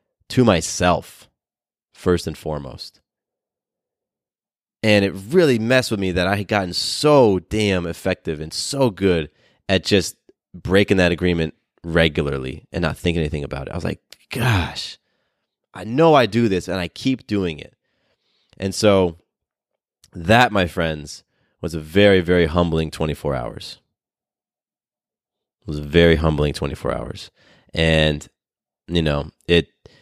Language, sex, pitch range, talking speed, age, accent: English, male, 80-100 Hz, 140 wpm, 30-49, American